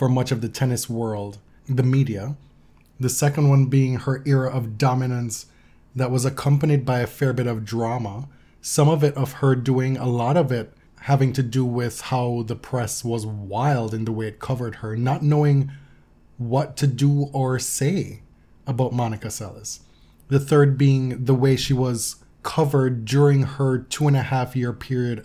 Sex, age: male, 20-39